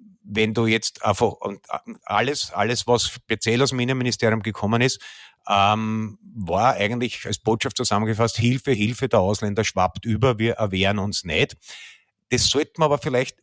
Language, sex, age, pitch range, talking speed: German, male, 50-69, 105-125 Hz, 150 wpm